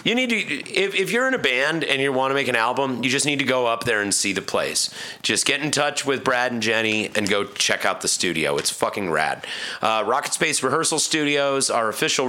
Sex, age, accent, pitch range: male, 30-49, American, 110-135 Hz